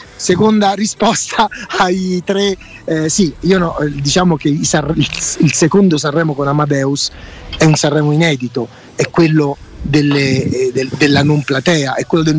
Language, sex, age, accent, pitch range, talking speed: Italian, male, 30-49, native, 140-175 Hz, 145 wpm